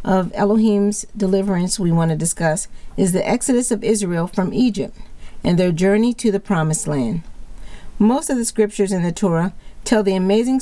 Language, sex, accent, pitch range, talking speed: English, female, American, 185-225 Hz, 175 wpm